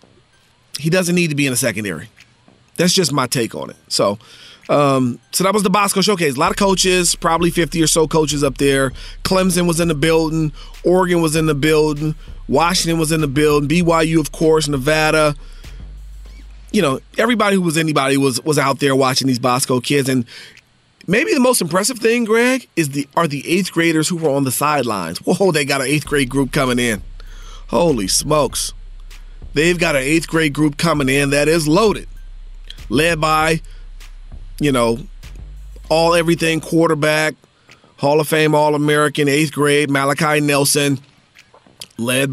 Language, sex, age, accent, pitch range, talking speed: English, male, 40-59, American, 135-165 Hz, 170 wpm